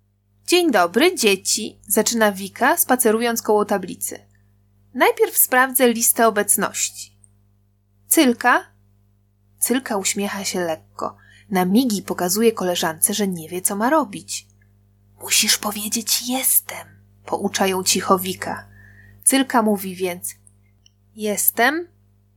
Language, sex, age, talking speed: Polish, female, 20-39, 100 wpm